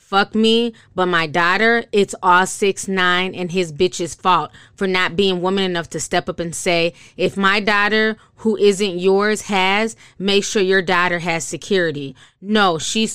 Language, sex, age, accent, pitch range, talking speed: English, female, 20-39, American, 170-205 Hz, 175 wpm